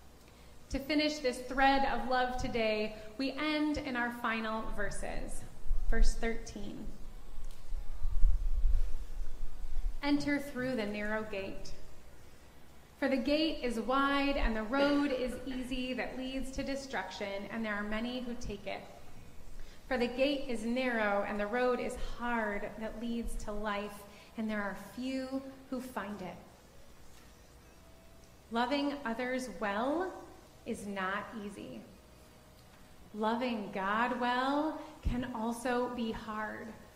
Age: 20-39